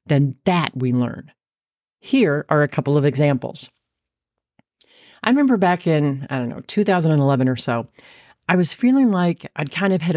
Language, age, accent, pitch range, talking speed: English, 40-59, American, 145-200 Hz, 165 wpm